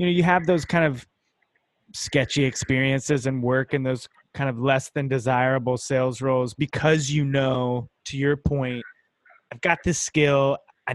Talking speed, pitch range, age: 170 wpm, 130-165 Hz, 20-39